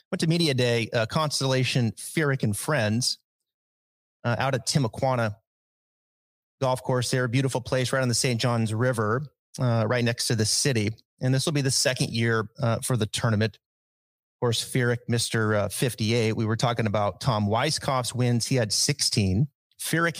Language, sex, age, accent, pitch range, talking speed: English, male, 30-49, American, 110-130 Hz, 170 wpm